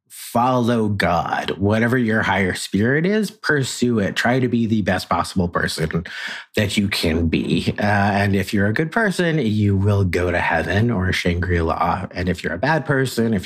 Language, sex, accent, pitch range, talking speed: English, male, American, 95-135 Hz, 185 wpm